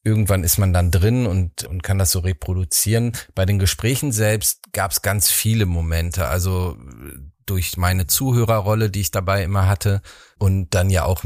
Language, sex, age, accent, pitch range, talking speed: German, male, 40-59, German, 90-105 Hz, 175 wpm